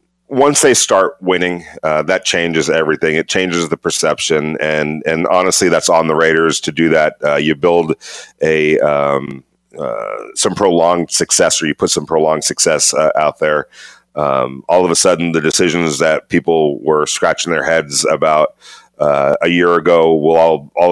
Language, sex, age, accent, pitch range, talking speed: English, male, 40-59, American, 75-90 Hz, 175 wpm